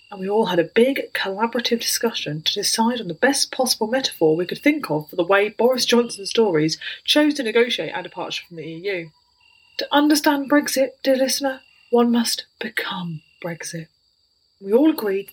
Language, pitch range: English, 195-285 Hz